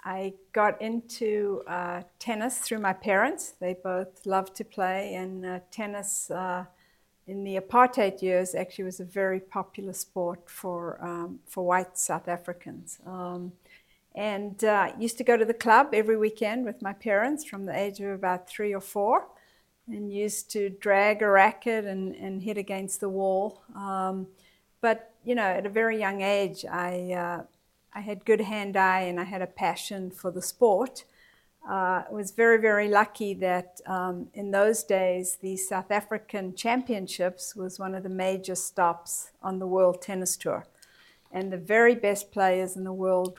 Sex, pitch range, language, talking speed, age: female, 185-210 Hz, English, 175 wpm, 50-69